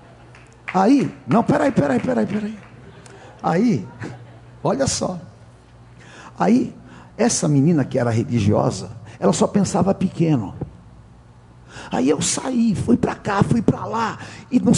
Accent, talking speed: Brazilian, 120 wpm